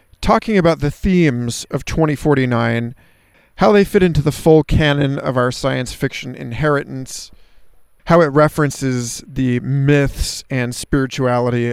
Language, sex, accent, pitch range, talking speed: English, male, American, 120-155 Hz, 130 wpm